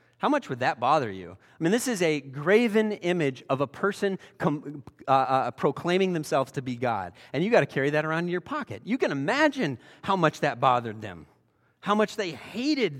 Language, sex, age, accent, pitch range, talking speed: English, male, 30-49, American, 155-215 Hz, 210 wpm